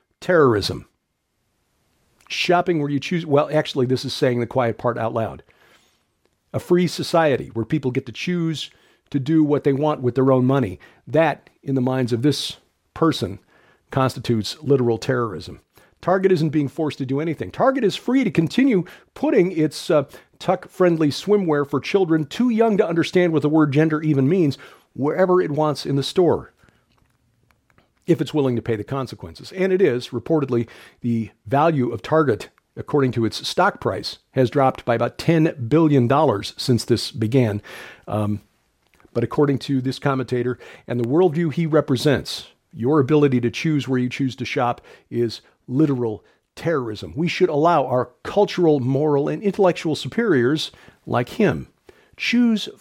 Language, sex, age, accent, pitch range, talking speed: English, male, 50-69, American, 120-160 Hz, 160 wpm